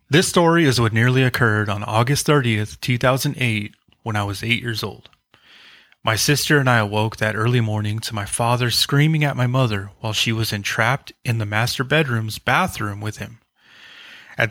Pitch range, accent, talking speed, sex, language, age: 110-130 Hz, American, 180 wpm, male, English, 30-49